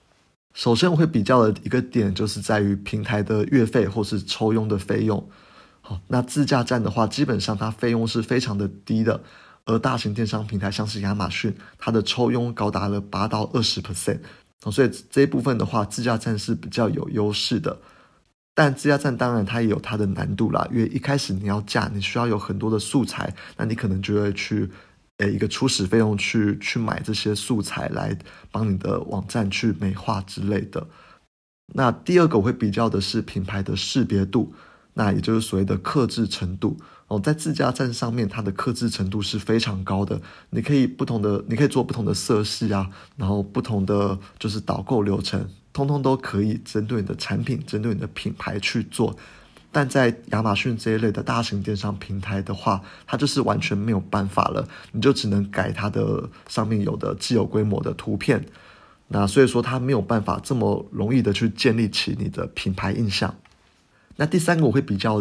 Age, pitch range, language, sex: 20-39, 100-120 Hz, Chinese, male